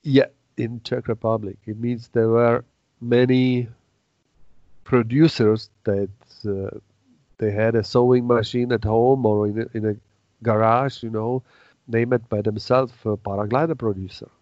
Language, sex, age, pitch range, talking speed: English, male, 40-59, 105-120 Hz, 135 wpm